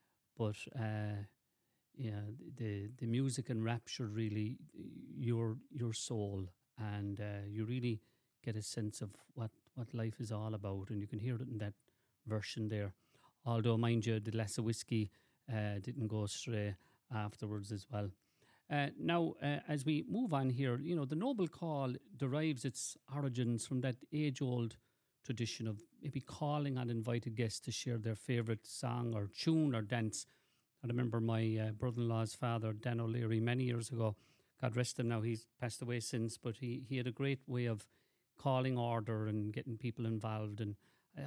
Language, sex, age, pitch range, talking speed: English, male, 50-69, 110-130 Hz, 175 wpm